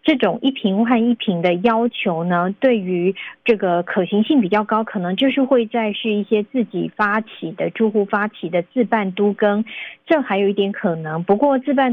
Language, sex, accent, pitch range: Chinese, female, native, 190-235 Hz